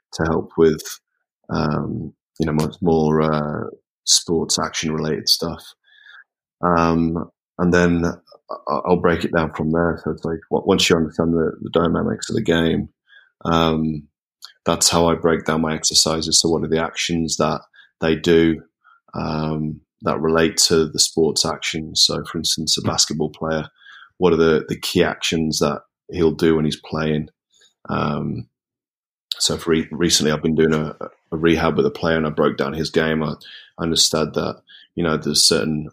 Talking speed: 170 wpm